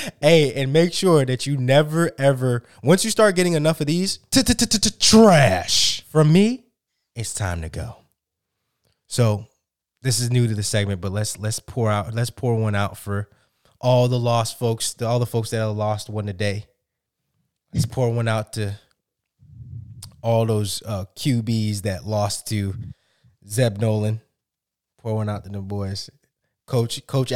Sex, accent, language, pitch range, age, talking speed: male, American, English, 100-125 Hz, 20-39, 160 wpm